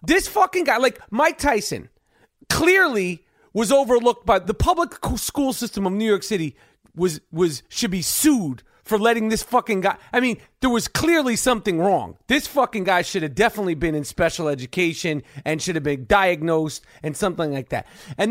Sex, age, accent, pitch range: male, 30-49, American, 195-260 Hz